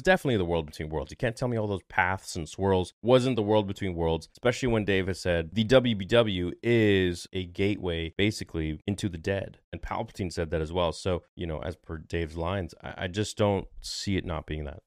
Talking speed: 220 wpm